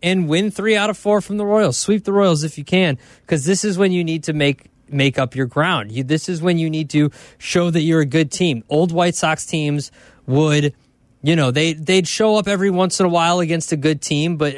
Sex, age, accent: male, 20-39, American